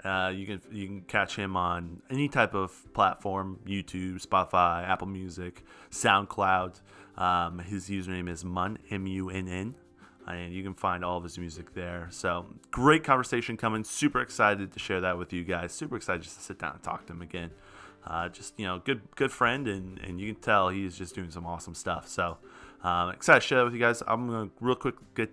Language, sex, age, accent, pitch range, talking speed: English, male, 30-49, American, 90-110 Hz, 210 wpm